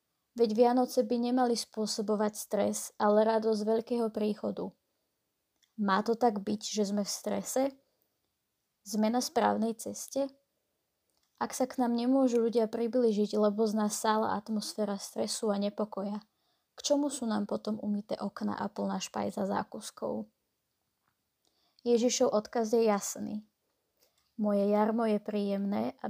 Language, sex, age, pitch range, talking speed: Slovak, female, 20-39, 205-230 Hz, 130 wpm